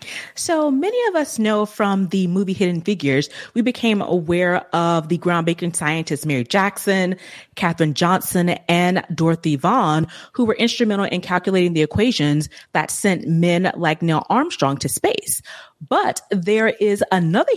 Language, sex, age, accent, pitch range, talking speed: English, female, 30-49, American, 165-215 Hz, 145 wpm